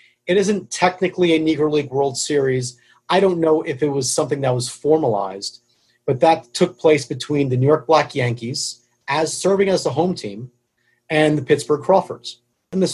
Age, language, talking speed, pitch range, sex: 40-59, English, 185 wpm, 120-170 Hz, male